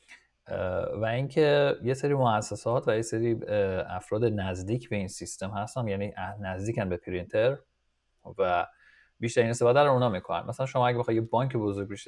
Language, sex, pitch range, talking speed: Persian, male, 105-130 Hz, 155 wpm